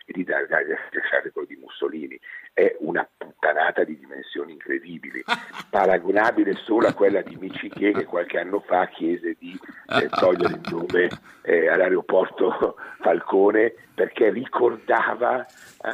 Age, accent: 50-69, native